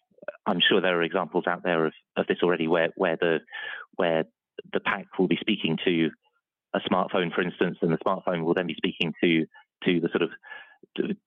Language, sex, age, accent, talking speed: English, male, 30-49, British, 200 wpm